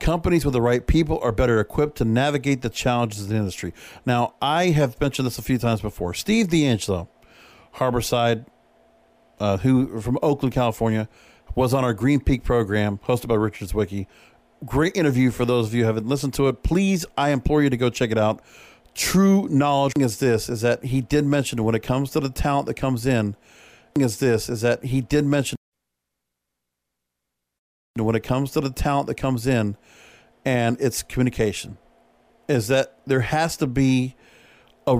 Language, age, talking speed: English, 50-69, 180 wpm